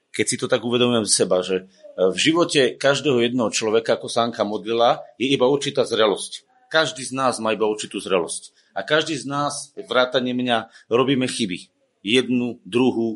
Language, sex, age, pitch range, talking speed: Slovak, male, 30-49, 120-150 Hz, 175 wpm